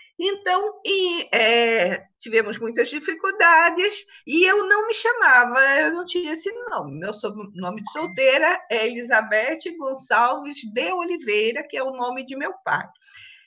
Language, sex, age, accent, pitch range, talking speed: Portuguese, female, 50-69, Brazilian, 235-375 Hz, 135 wpm